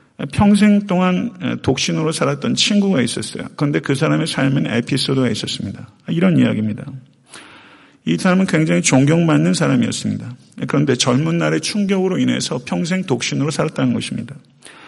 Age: 50-69